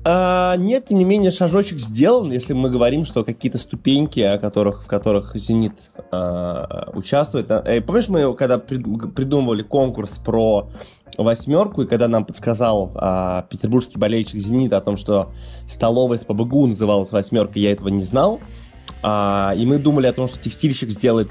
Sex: male